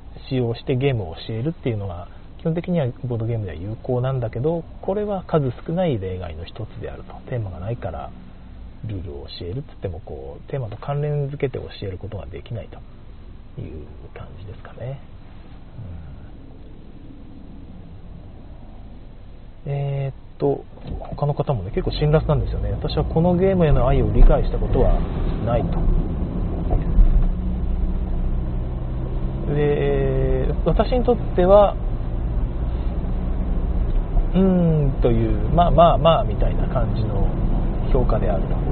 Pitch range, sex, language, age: 90-140 Hz, male, Japanese, 40-59